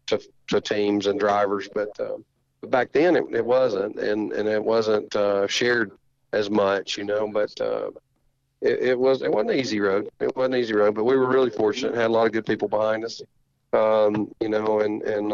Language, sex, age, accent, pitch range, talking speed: English, male, 40-59, American, 105-125 Hz, 220 wpm